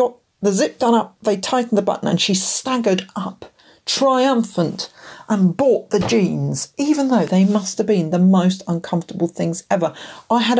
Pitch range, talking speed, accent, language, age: 180-235 Hz, 170 wpm, British, English, 50-69